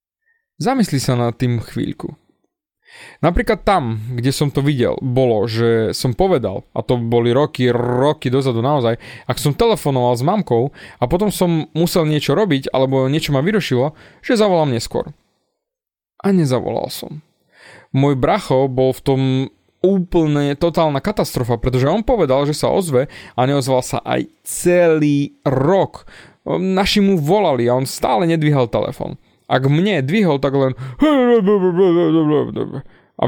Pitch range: 130-185 Hz